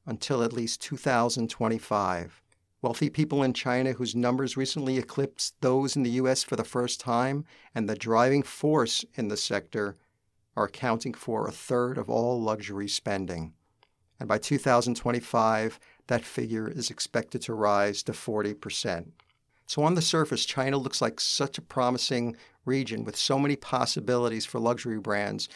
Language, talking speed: English, 155 wpm